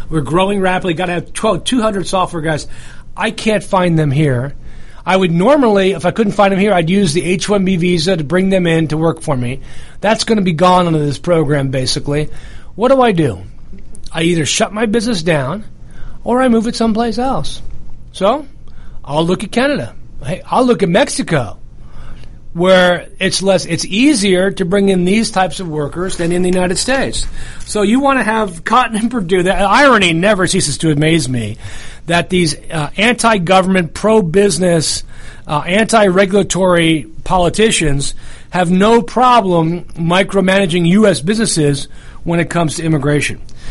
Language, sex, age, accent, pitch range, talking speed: English, male, 40-59, American, 155-205 Hz, 170 wpm